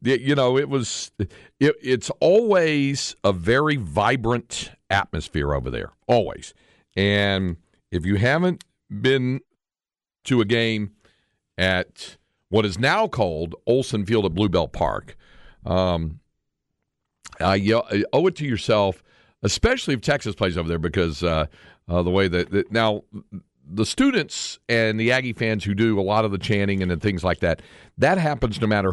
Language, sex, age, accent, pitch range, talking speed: English, male, 50-69, American, 90-125 Hz, 155 wpm